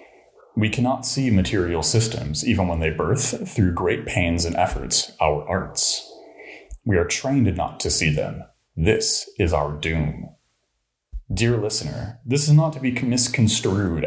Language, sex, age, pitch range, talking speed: English, male, 30-49, 85-115 Hz, 150 wpm